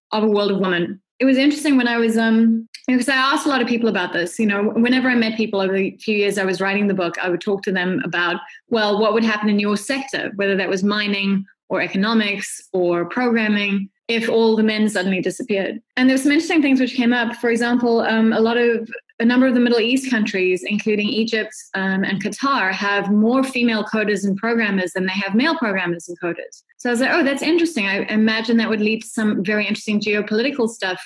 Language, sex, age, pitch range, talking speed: English, female, 20-39, 195-235 Hz, 235 wpm